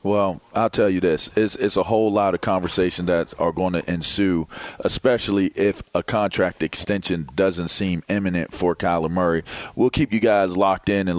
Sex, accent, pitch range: male, American, 95-125 Hz